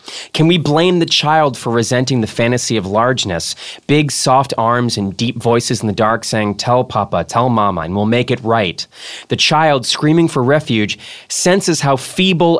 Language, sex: English, male